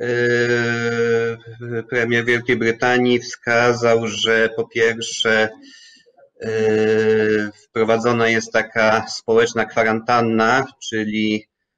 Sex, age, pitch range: male, 30-49, 110-120 Hz